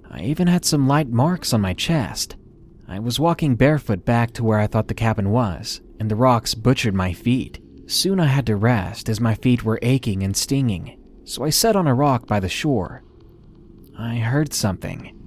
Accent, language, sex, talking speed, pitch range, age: American, English, male, 200 wpm, 105-140 Hz, 30-49